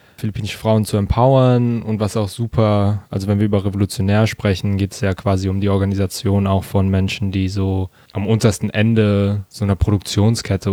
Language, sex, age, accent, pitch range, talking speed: German, male, 10-29, German, 95-110 Hz, 180 wpm